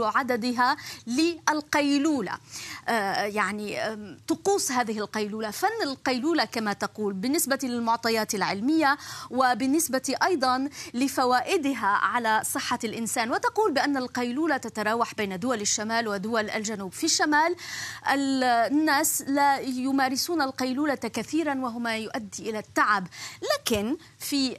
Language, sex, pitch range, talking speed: Arabic, female, 230-300 Hz, 105 wpm